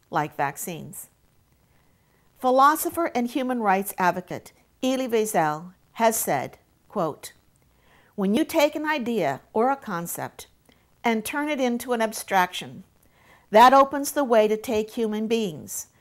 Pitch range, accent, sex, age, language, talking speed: 205-270 Hz, American, female, 50-69, English, 125 wpm